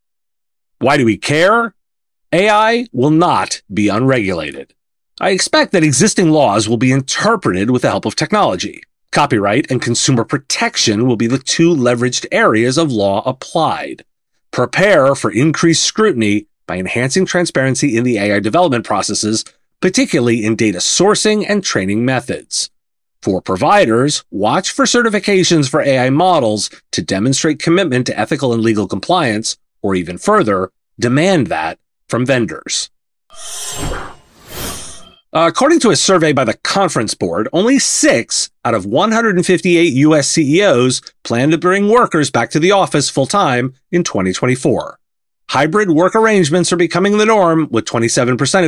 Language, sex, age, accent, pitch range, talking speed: English, male, 30-49, American, 115-180 Hz, 140 wpm